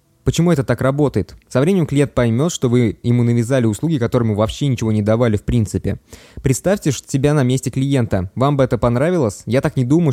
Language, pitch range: Russian, 115-145 Hz